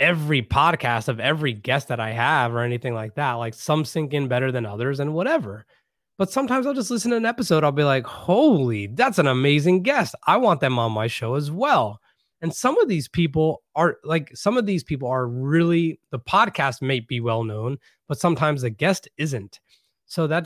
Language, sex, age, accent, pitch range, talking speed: English, male, 20-39, American, 120-165 Hz, 210 wpm